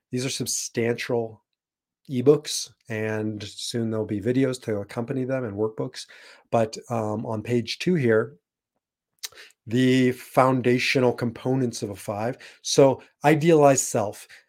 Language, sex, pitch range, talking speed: English, male, 115-140 Hz, 120 wpm